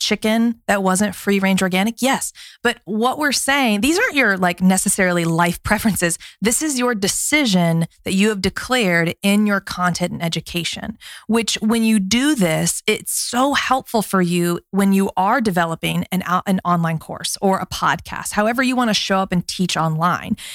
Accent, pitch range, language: American, 180-240 Hz, English